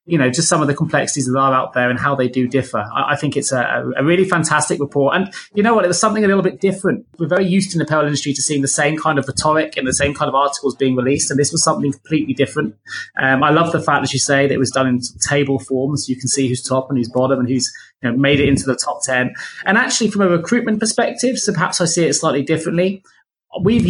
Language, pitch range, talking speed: English, 135-165 Hz, 270 wpm